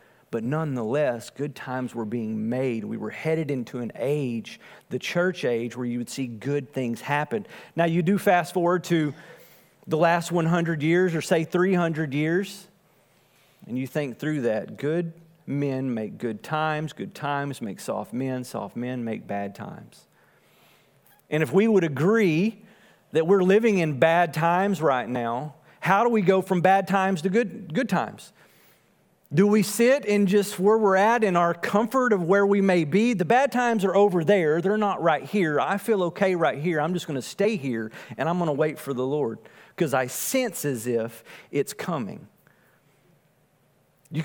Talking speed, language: 185 wpm, English